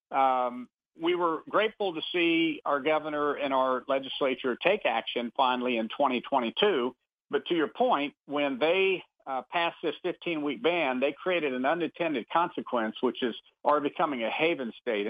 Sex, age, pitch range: male, 50-69, 130-185 Hz